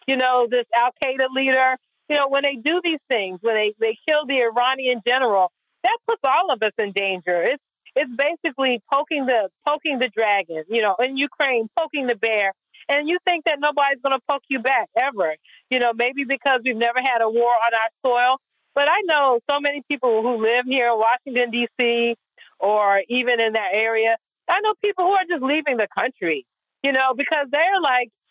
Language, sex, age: English, female, 40-59